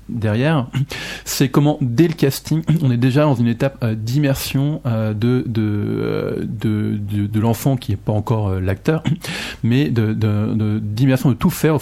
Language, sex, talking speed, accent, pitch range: French, male, 180 wpm, French, 110-140 Hz